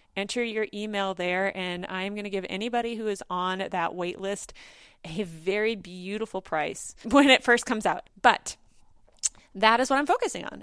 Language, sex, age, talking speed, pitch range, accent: English, female, 30-49, 180 wpm, 190-255 Hz, American